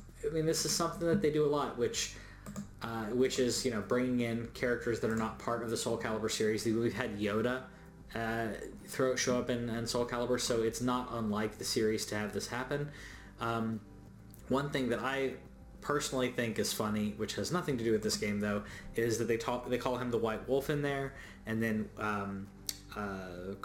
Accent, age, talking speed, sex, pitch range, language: American, 20-39, 210 wpm, male, 105-130 Hz, English